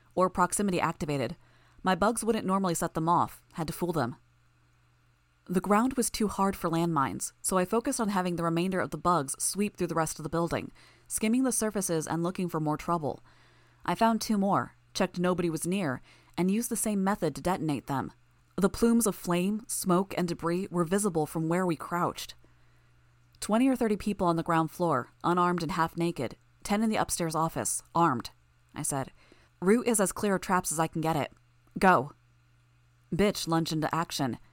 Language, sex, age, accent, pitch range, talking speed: English, female, 20-39, American, 160-195 Hz, 190 wpm